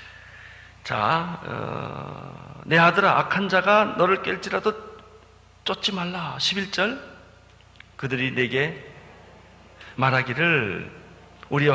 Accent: native